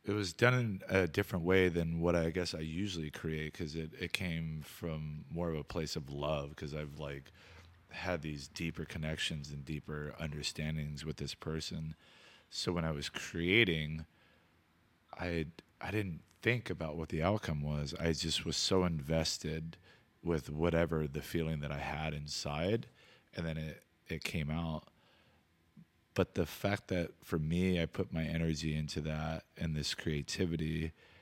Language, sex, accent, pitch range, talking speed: English, male, American, 75-85 Hz, 165 wpm